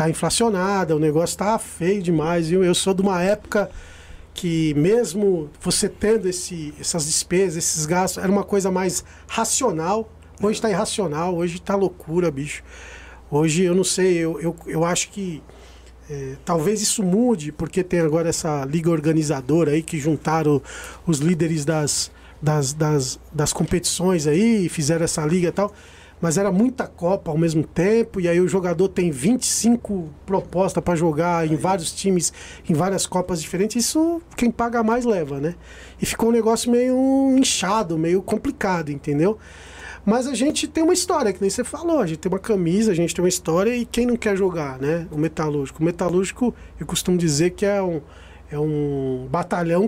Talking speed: 175 wpm